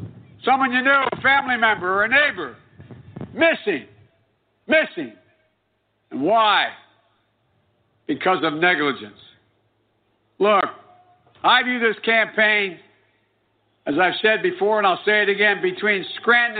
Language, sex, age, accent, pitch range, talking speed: English, male, 60-79, American, 190-255 Hz, 115 wpm